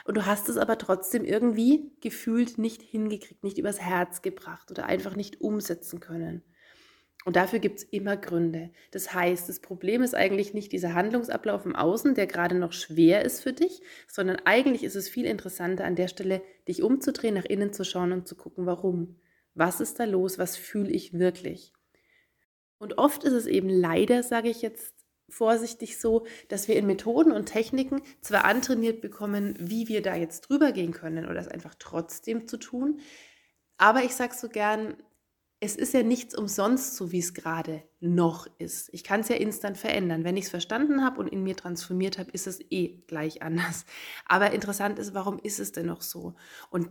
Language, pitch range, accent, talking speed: German, 180-230 Hz, German, 190 wpm